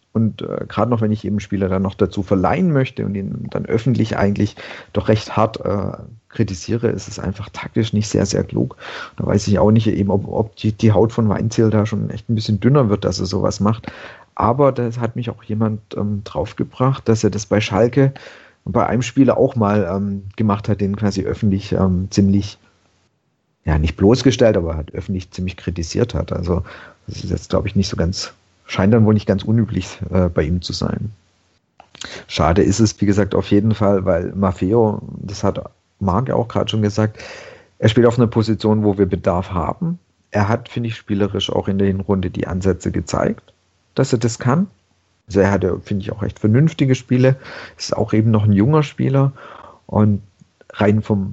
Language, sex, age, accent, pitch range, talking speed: German, male, 50-69, German, 100-115 Hz, 195 wpm